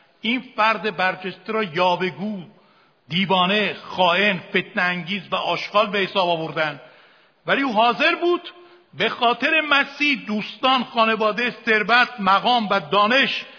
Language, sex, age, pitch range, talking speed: Persian, male, 50-69, 190-250 Hz, 110 wpm